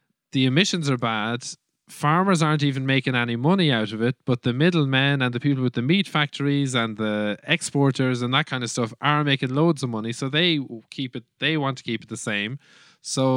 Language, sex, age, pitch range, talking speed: English, male, 20-39, 115-145 Hz, 215 wpm